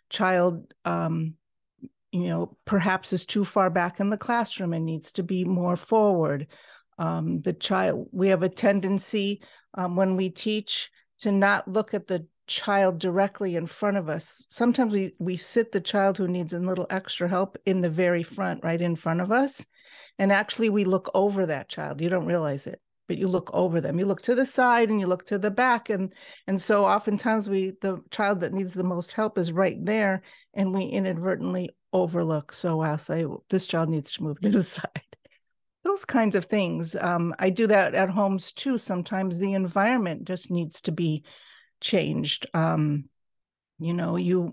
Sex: female